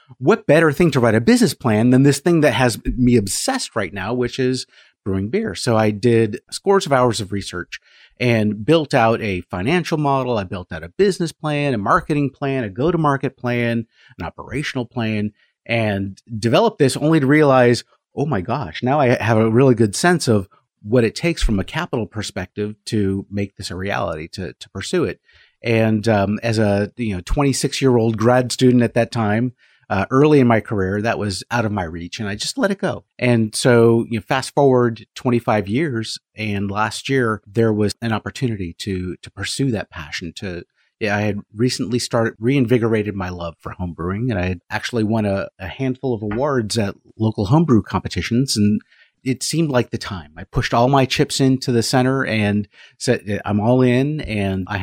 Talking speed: 195 wpm